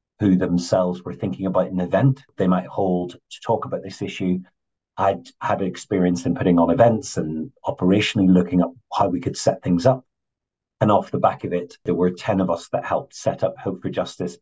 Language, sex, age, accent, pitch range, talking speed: English, male, 40-59, British, 90-95 Hz, 210 wpm